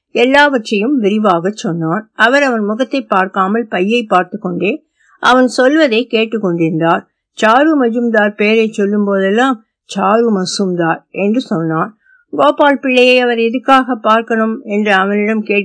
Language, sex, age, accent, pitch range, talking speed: Tamil, female, 60-79, native, 190-230 Hz, 40 wpm